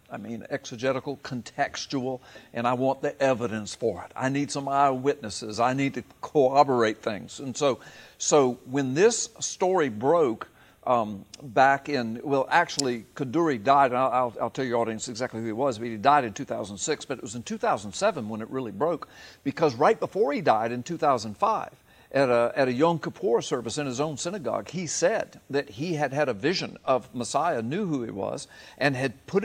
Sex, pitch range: male, 120-155 Hz